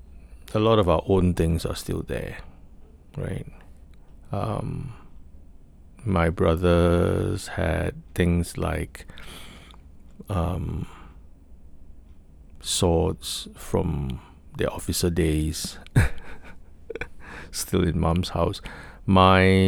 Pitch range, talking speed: 75-90 Hz, 80 wpm